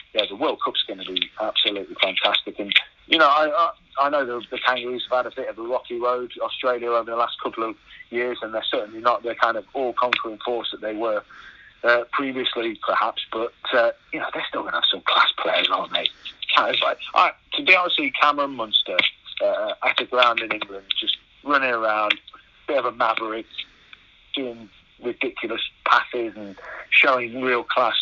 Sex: male